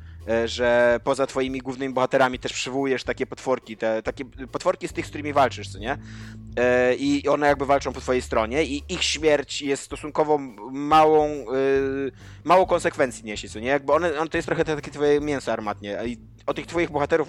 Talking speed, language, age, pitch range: 185 wpm, Polish, 20-39, 125-150 Hz